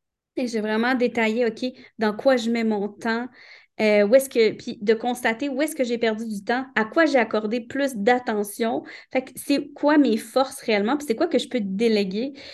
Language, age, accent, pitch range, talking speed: French, 20-39, Canadian, 215-265 Hz, 215 wpm